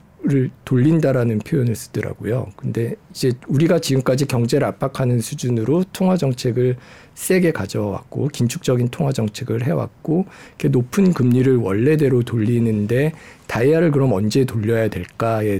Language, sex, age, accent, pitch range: Korean, male, 50-69, native, 115-165 Hz